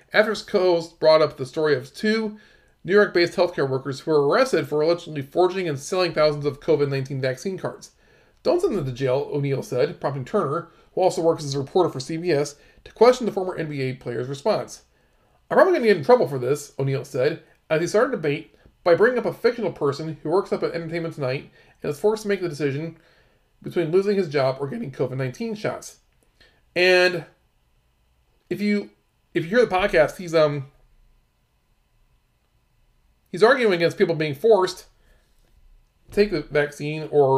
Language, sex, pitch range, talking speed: English, male, 140-185 Hz, 185 wpm